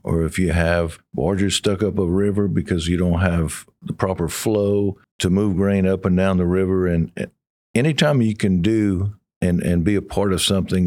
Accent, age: American, 50-69